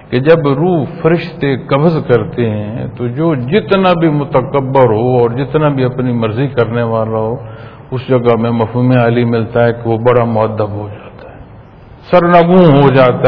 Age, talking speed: 50-69, 170 wpm